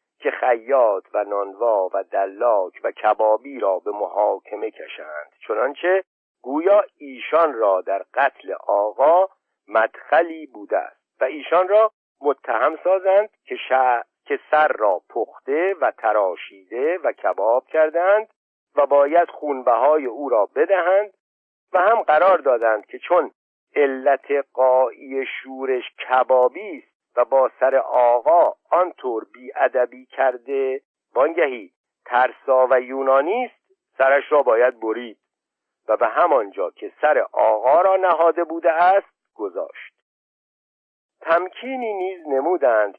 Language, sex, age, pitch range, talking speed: Persian, male, 50-69, 130-210 Hz, 120 wpm